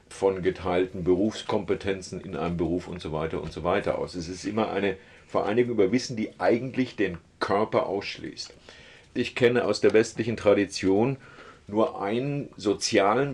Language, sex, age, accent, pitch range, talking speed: German, male, 40-59, German, 95-120 Hz, 155 wpm